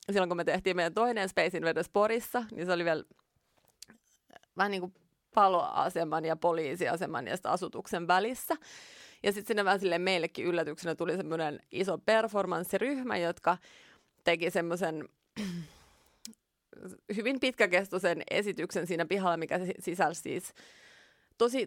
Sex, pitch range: female, 175-235 Hz